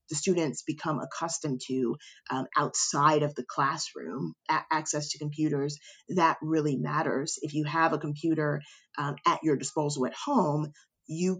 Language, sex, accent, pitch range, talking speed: English, female, American, 145-170 Hz, 145 wpm